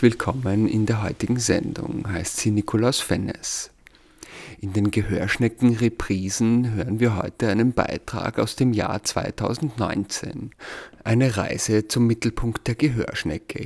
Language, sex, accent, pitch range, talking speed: German, male, German, 105-135 Hz, 120 wpm